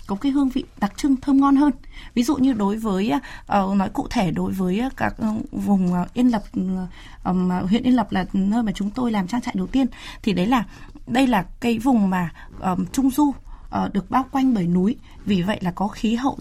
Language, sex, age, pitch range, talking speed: Vietnamese, female, 20-39, 190-265 Hz, 210 wpm